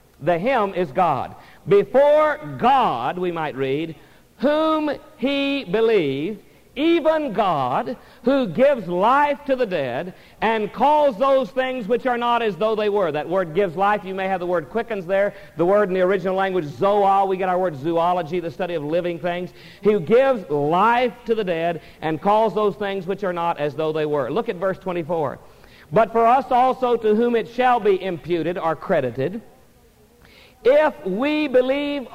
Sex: male